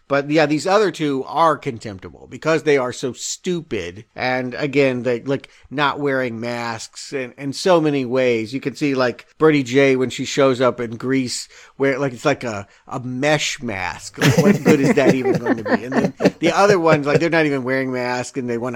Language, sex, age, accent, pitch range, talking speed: English, male, 50-69, American, 125-160 Hz, 220 wpm